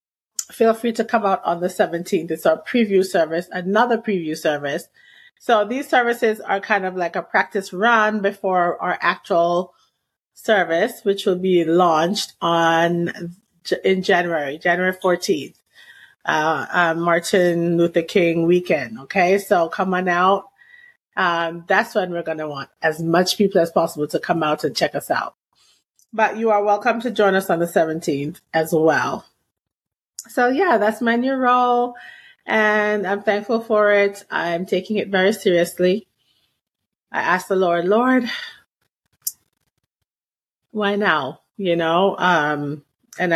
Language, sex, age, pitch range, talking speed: English, female, 30-49, 170-215 Hz, 145 wpm